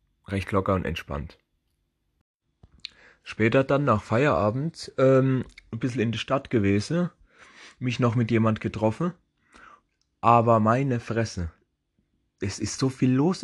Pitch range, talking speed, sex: 105-130 Hz, 125 wpm, male